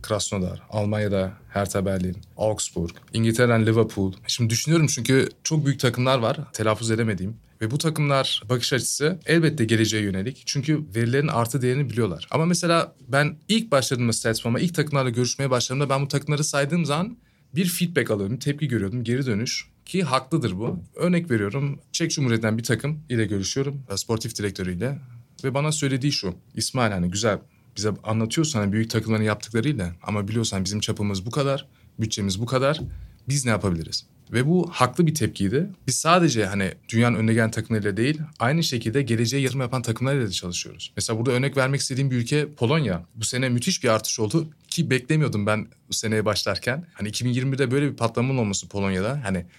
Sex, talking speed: male, 165 wpm